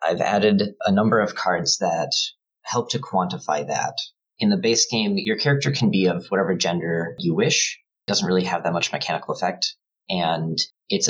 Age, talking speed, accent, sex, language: 30-49, 185 wpm, American, male, English